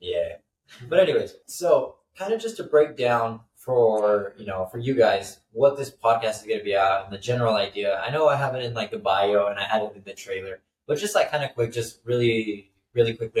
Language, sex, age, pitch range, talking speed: English, male, 20-39, 110-140 Hz, 240 wpm